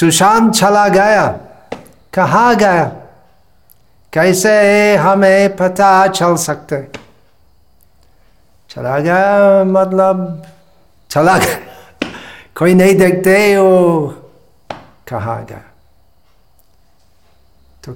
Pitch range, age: 125-180 Hz, 60-79